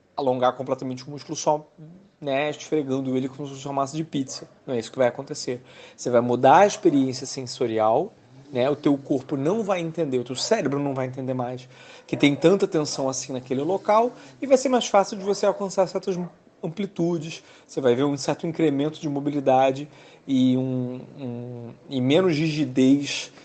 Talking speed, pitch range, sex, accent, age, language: 185 wpm, 130-165 Hz, male, Brazilian, 40-59, Portuguese